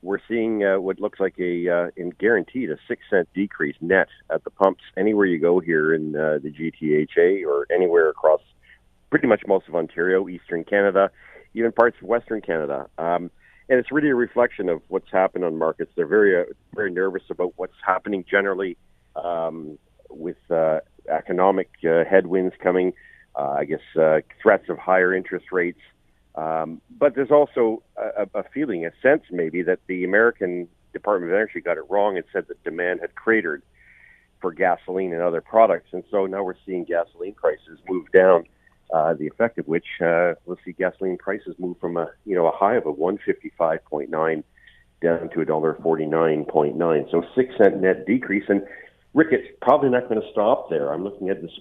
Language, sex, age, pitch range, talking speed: English, male, 50-69, 85-105 Hz, 190 wpm